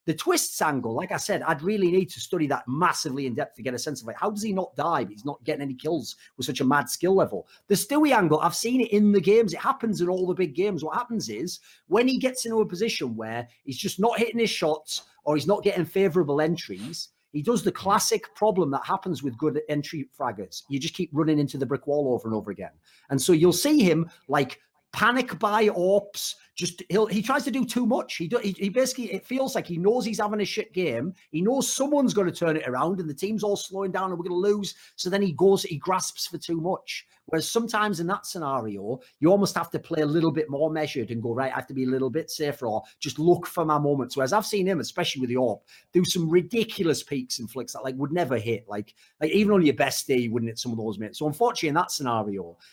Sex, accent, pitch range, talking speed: male, British, 145-205 Hz, 260 wpm